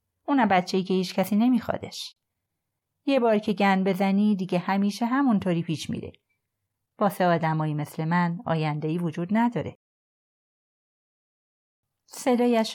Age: 30-49